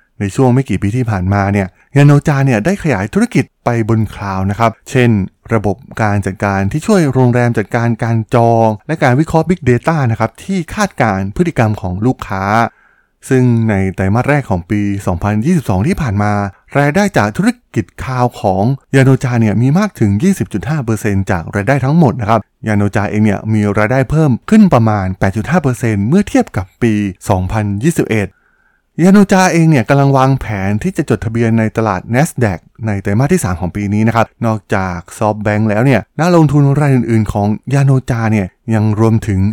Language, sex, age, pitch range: Thai, male, 20-39, 105-135 Hz